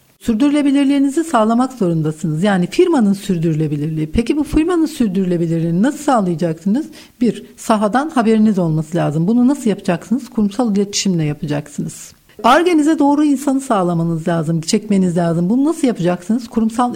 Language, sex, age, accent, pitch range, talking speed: Turkish, female, 60-79, native, 185-255 Hz, 120 wpm